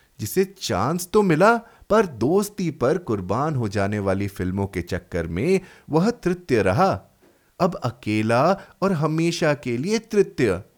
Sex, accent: male, native